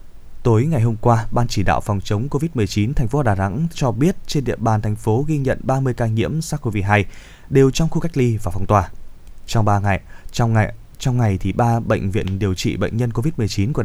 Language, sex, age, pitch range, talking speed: Vietnamese, male, 20-39, 100-135 Hz, 225 wpm